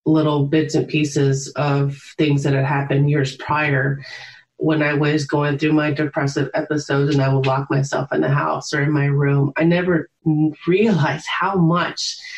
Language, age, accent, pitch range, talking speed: English, 30-49, American, 155-185 Hz, 175 wpm